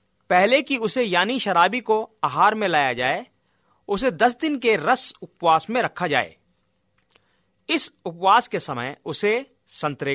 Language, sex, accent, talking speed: Hindi, male, native, 150 wpm